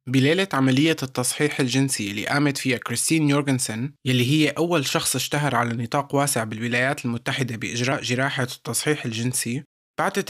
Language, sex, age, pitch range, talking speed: Arabic, male, 20-39, 125-150 Hz, 140 wpm